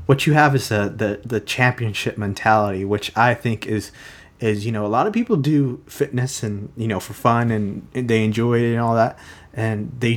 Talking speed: 210 wpm